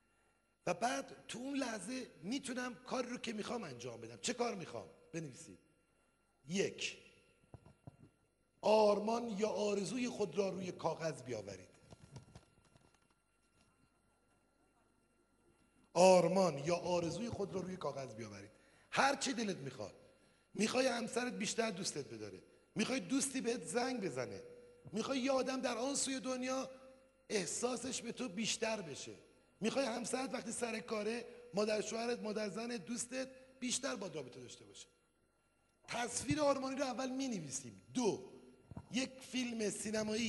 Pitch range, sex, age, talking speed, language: 175-245 Hz, male, 50-69, 125 wpm, Persian